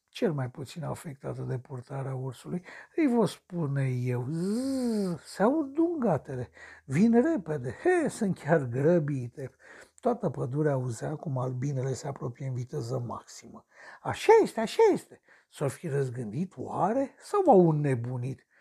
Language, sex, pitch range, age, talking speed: Romanian, male, 135-175 Hz, 60-79, 130 wpm